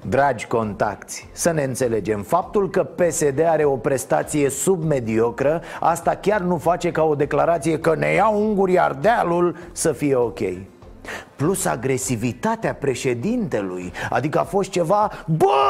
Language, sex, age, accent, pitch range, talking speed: Romanian, male, 30-49, native, 150-235 Hz, 140 wpm